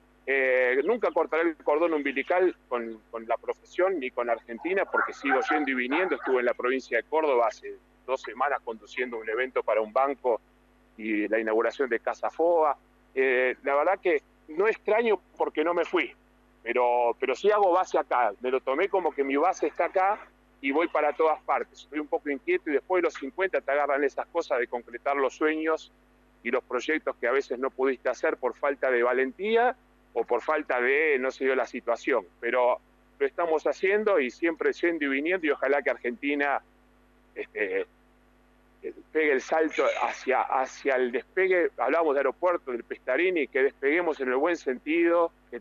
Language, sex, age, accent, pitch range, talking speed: Spanish, male, 40-59, Argentinian, 130-210 Hz, 185 wpm